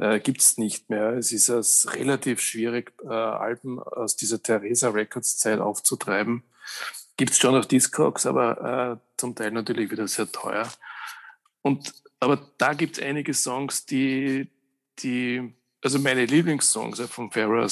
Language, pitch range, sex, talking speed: German, 120-140 Hz, male, 145 wpm